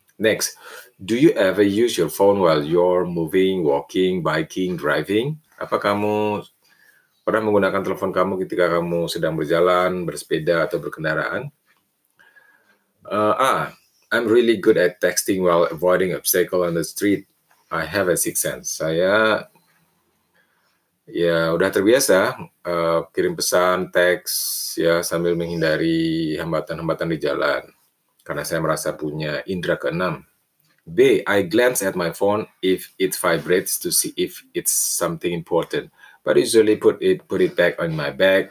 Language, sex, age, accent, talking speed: Indonesian, male, 30-49, native, 140 wpm